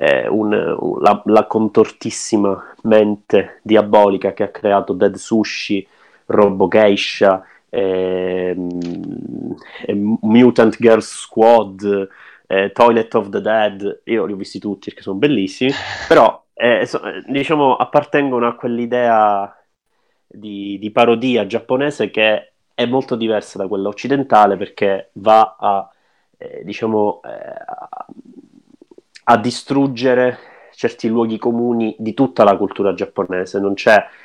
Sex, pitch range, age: male, 100-125 Hz, 30-49